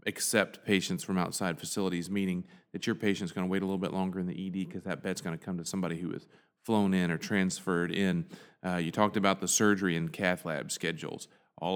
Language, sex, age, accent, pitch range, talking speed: English, male, 40-59, American, 90-110 Hz, 230 wpm